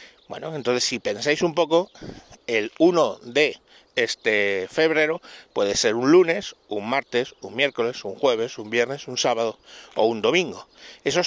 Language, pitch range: Spanish, 120-175 Hz